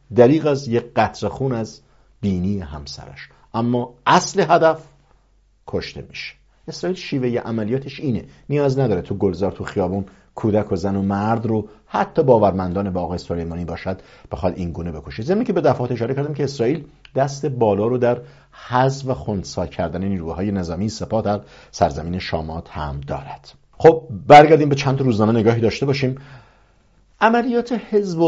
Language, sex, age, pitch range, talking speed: English, male, 50-69, 95-135 Hz, 160 wpm